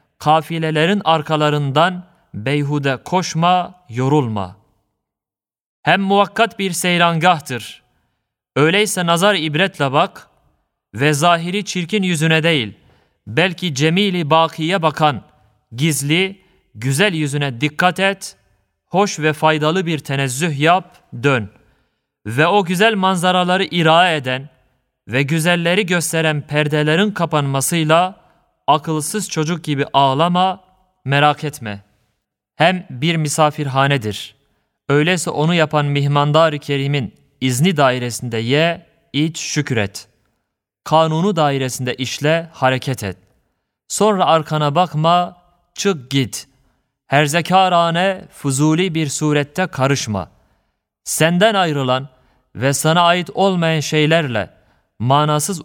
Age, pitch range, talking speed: 30-49, 130-175 Hz, 95 wpm